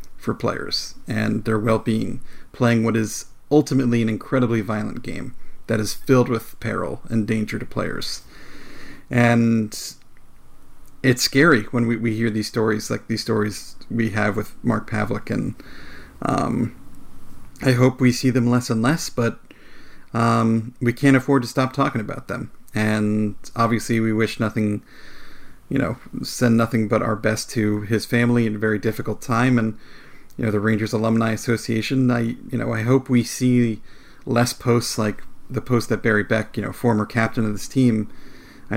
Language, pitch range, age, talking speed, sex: English, 110-125 Hz, 40-59, 170 wpm, male